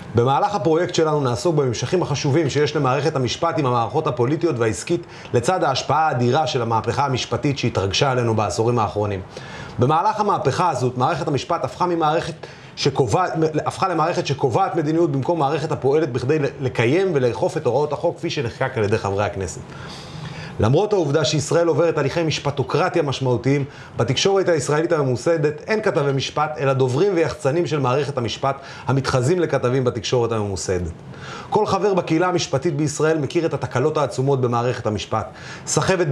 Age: 30-49